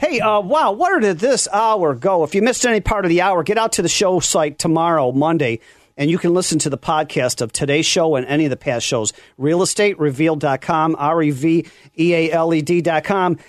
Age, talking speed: 40-59, 220 wpm